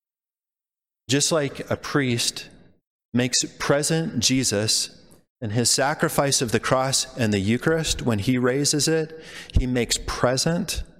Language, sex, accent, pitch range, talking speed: English, male, American, 110-145 Hz, 125 wpm